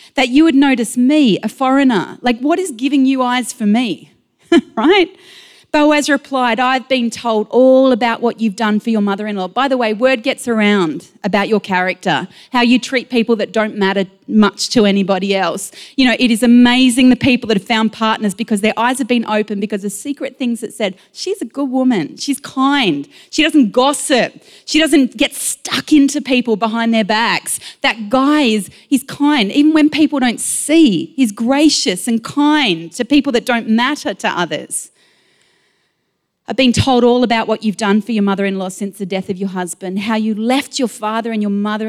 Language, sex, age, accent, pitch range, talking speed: English, female, 30-49, Australian, 215-275 Hz, 195 wpm